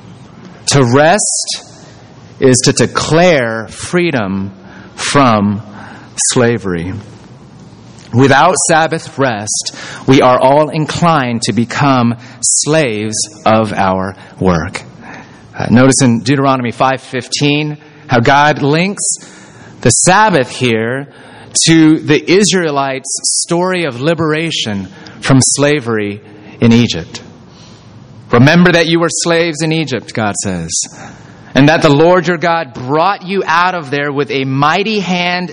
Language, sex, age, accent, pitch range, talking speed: English, male, 30-49, American, 115-165 Hz, 110 wpm